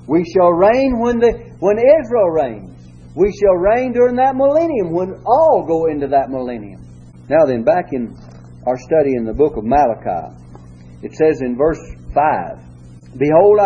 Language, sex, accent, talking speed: English, male, American, 160 wpm